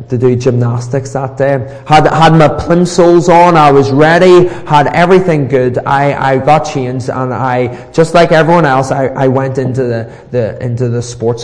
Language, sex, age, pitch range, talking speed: English, male, 20-39, 125-150 Hz, 185 wpm